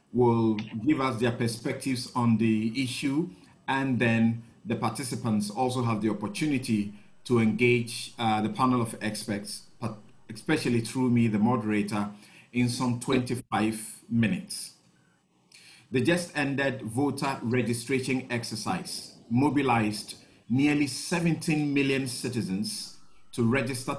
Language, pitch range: English, 110-140 Hz